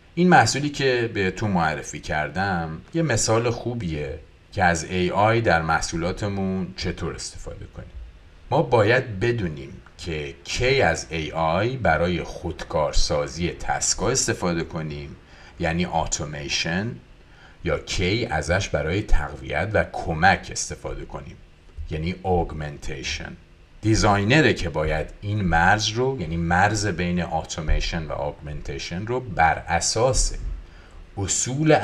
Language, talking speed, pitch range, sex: Persian, 110 wpm, 80-105 Hz, male